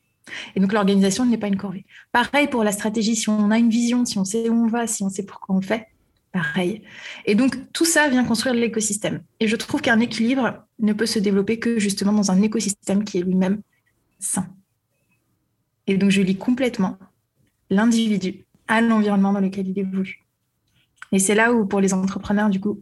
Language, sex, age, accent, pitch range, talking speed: French, female, 20-39, French, 195-225 Hz, 200 wpm